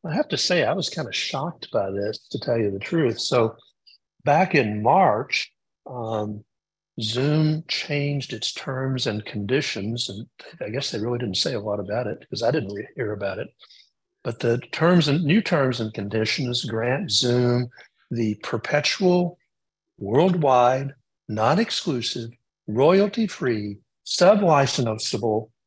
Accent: American